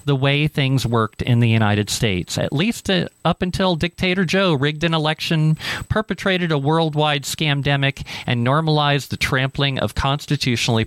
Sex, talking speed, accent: male, 150 wpm, American